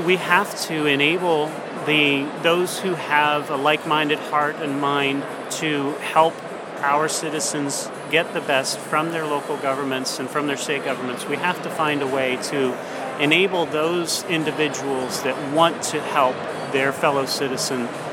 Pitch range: 140-165 Hz